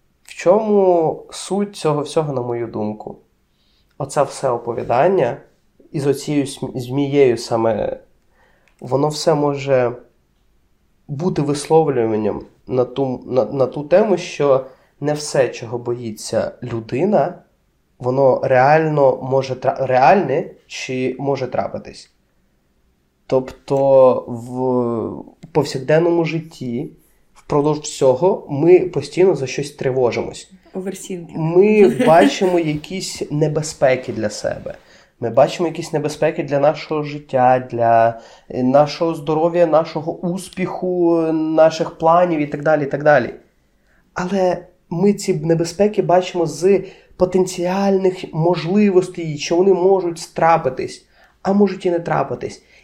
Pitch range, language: 130-180 Hz, Ukrainian